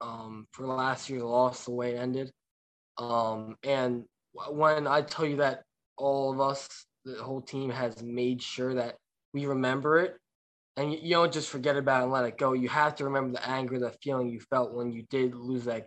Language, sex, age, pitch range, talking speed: English, male, 10-29, 120-140 Hz, 210 wpm